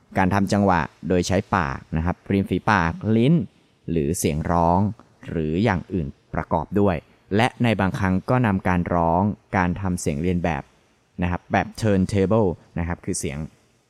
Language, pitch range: English, 85-110 Hz